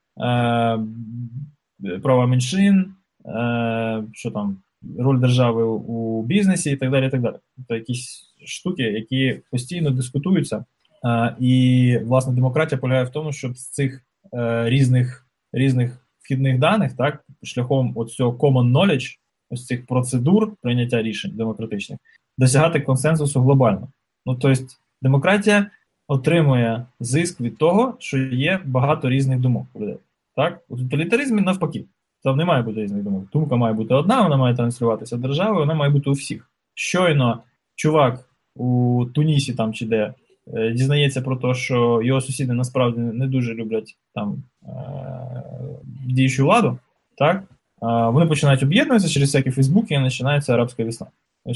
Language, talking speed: Ukrainian, 135 wpm